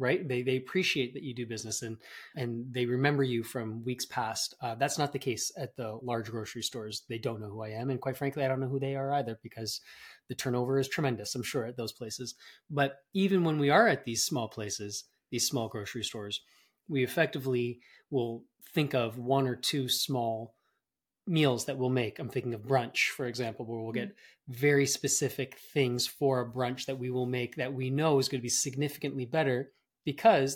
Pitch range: 115-140 Hz